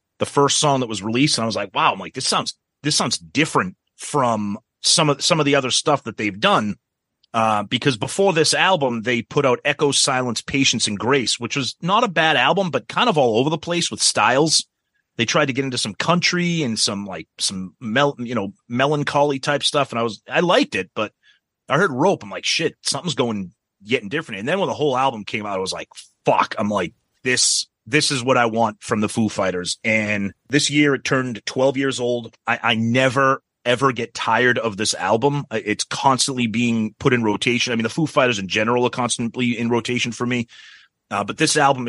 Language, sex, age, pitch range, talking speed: English, male, 30-49, 110-140 Hz, 220 wpm